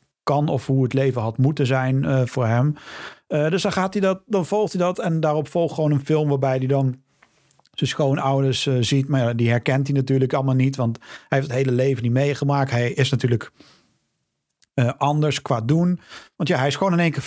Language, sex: Dutch, male